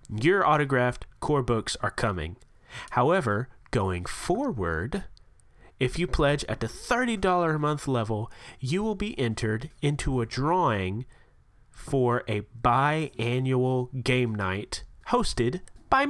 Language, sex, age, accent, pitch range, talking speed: English, male, 30-49, American, 120-160 Hz, 120 wpm